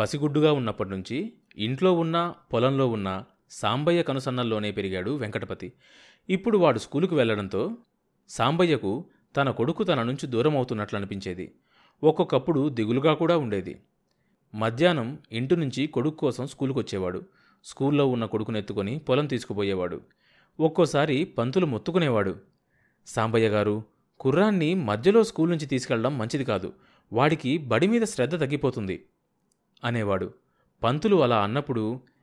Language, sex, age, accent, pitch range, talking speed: Telugu, male, 30-49, native, 105-155 Hz, 110 wpm